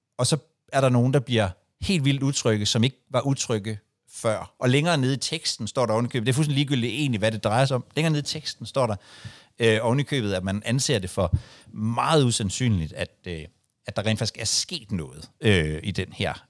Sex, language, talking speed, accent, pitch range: male, Danish, 220 wpm, native, 105-140 Hz